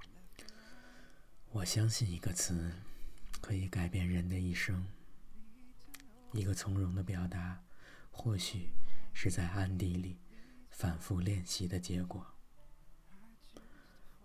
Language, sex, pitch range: Chinese, male, 90-120 Hz